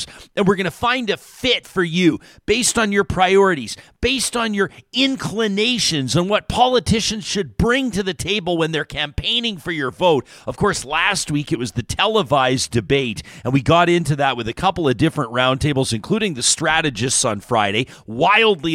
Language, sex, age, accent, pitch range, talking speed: English, male, 40-59, American, 135-205 Hz, 180 wpm